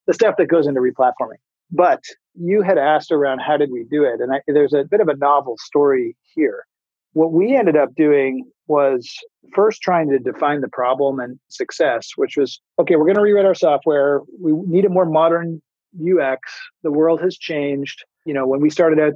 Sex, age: male, 40-59